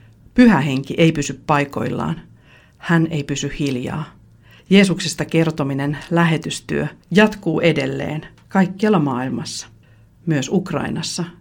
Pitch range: 140-170 Hz